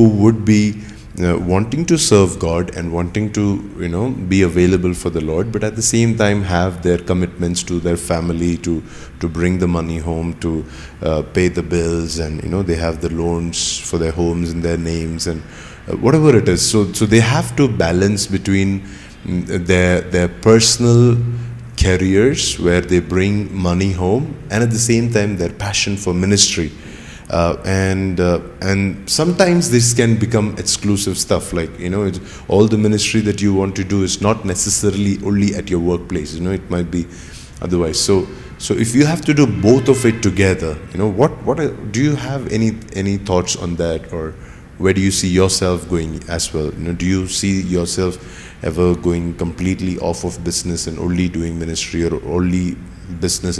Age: 30-49